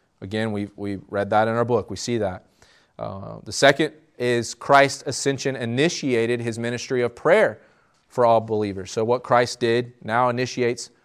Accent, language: American, English